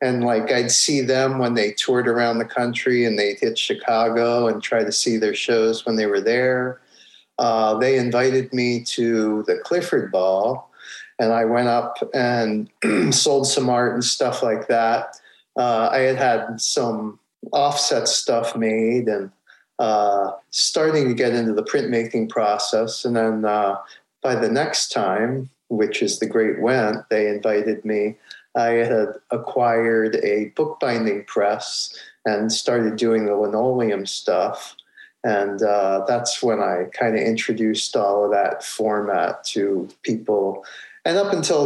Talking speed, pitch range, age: 155 wpm, 110-125 Hz, 40-59